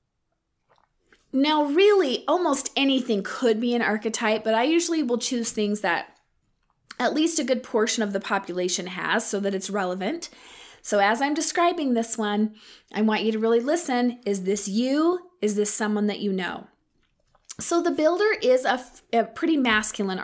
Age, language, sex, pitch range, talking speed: 20-39, English, female, 205-275 Hz, 170 wpm